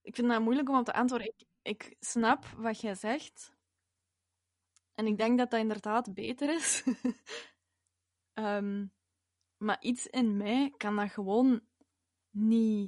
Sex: female